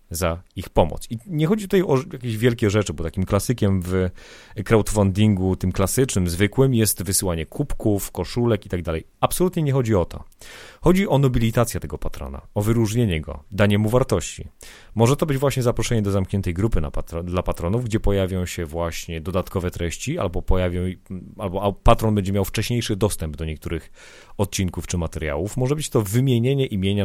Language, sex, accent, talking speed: Polish, male, native, 175 wpm